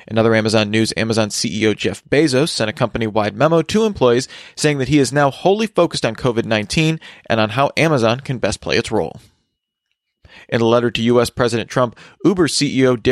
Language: English